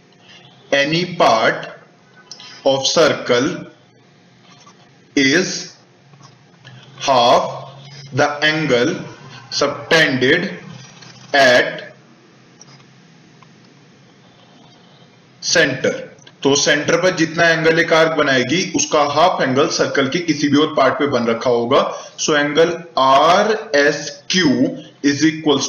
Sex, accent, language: male, native, Hindi